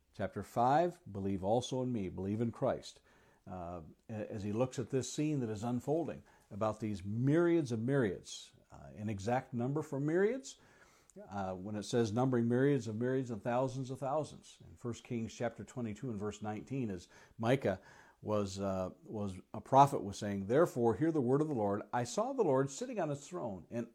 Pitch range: 105-135 Hz